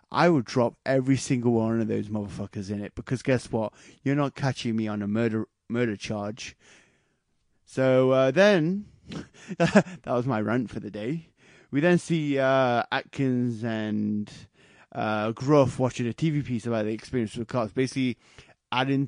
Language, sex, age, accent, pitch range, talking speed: English, male, 20-39, British, 110-135 Hz, 165 wpm